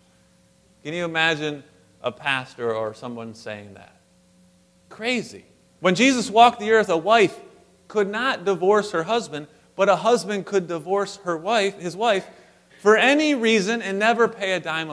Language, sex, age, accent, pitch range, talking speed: English, male, 30-49, American, 120-195 Hz, 155 wpm